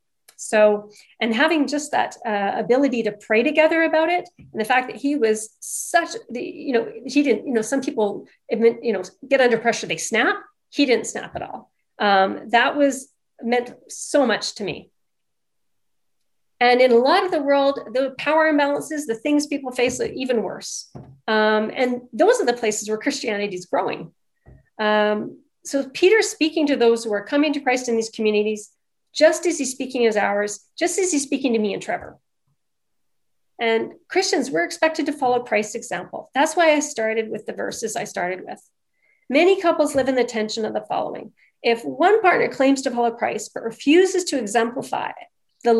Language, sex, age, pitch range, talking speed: English, female, 40-59, 225-310 Hz, 185 wpm